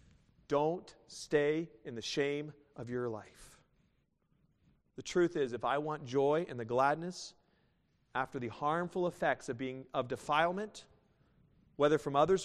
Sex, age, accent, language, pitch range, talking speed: male, 40-59, American, English, 150-235 Hz, 140 wpm